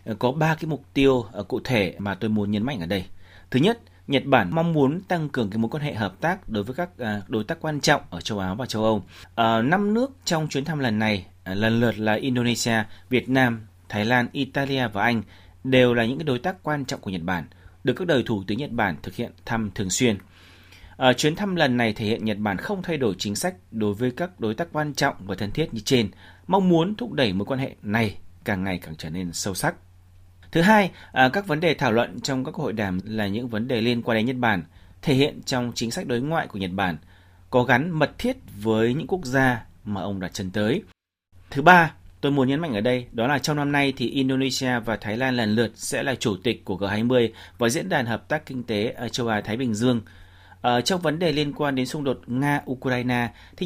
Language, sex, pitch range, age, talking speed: Vietnamese, male, 100-140 Hz, 30-49, 245 wpm